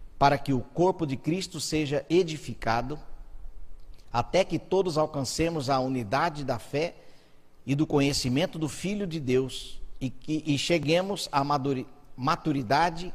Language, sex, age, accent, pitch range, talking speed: Portuguese, male, 50-69, Brazilian, 125-160 Hz, 130 wpm